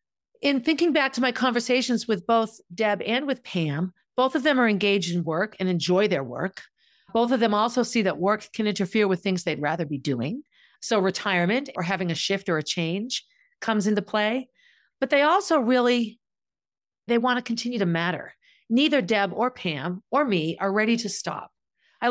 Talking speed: 195 wpm